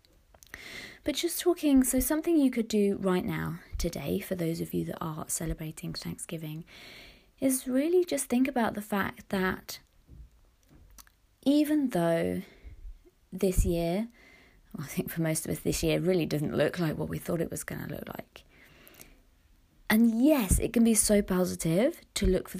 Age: 20-39